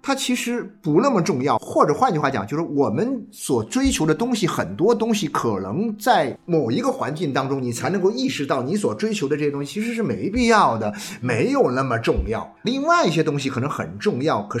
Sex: male